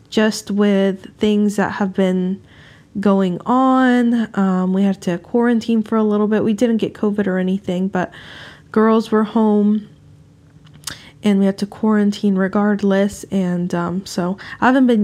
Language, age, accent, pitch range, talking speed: English, 20-39, American, 190-220 Hz, 155 wpm